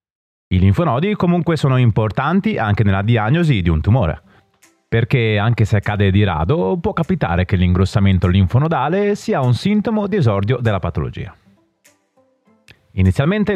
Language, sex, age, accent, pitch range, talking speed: Italian, male, 30-49, native, 95-145 Hz, 135 wpm